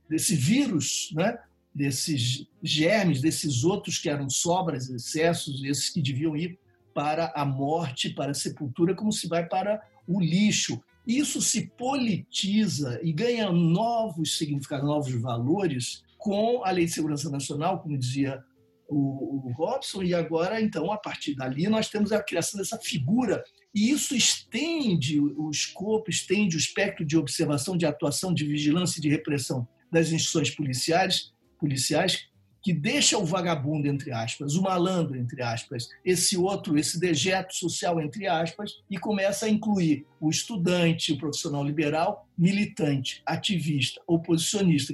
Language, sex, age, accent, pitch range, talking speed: Portuguese, male, 60-79, Brazilian, 145-185 Hz, 145 wpm